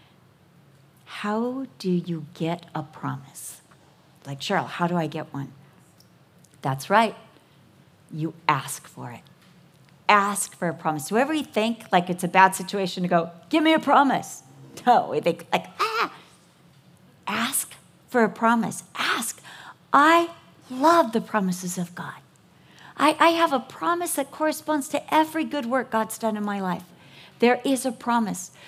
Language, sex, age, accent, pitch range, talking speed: English, female, 50-69, American, 180-255 Hz, 155 wpm